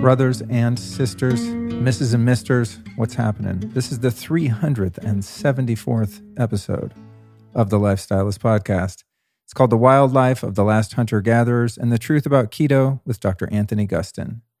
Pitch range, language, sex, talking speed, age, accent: 105-130 Hz, English, male, 145 wpm, 40-59, American